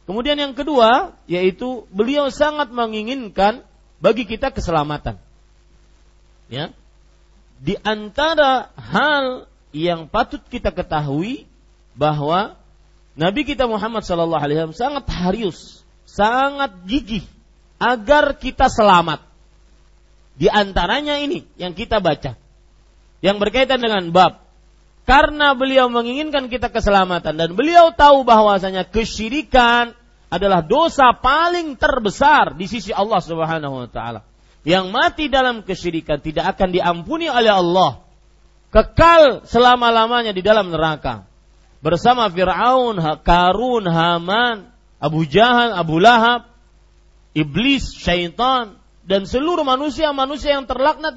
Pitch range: 165-265 Hz